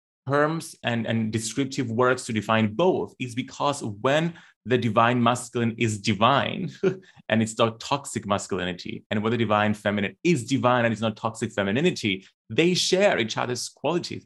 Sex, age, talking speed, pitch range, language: male, 30-49, 160 wpm, 105-125 Hz, English